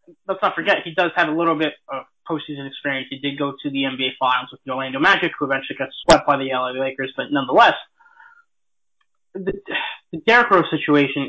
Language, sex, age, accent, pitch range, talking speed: English, male, 20-39, American, 140-175 Hz, 200 wpm